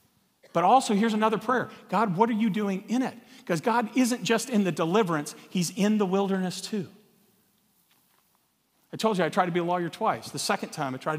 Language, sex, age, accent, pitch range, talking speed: English, male, 40-59, American, 165-200 Hz, 210 wpm